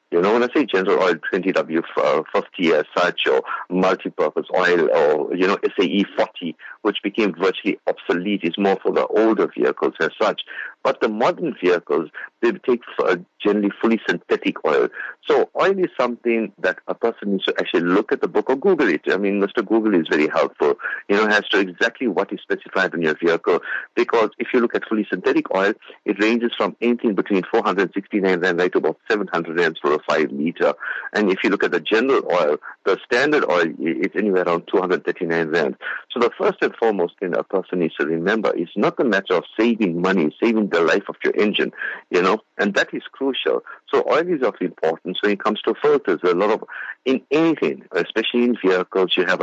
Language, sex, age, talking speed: English, male, 50-69, 200 wpm